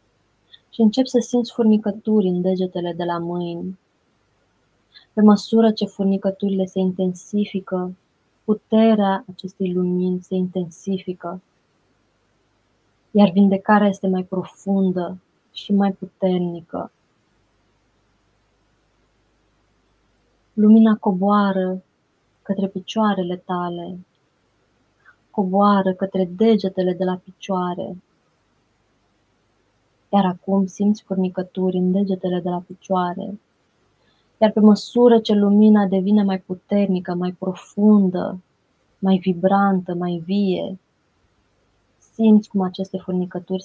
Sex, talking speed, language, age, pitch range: female, 90 wpm, Romanian, 20-39, 135-195 Hz